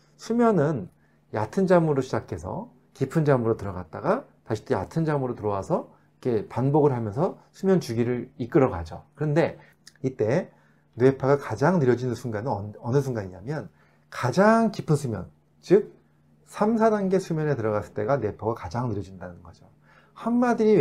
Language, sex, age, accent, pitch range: Korean, male, 30-49, native, 105-170 Hz